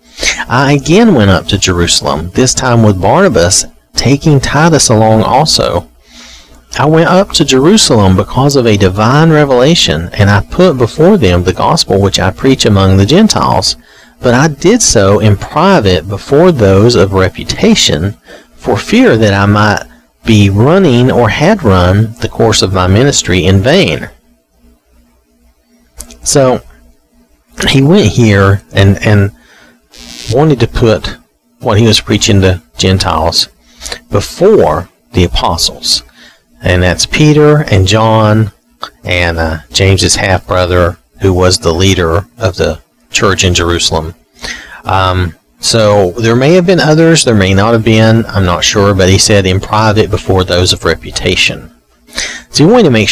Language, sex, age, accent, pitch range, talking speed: English, male, 40-59, American, 80-115 Hz, 145 wpm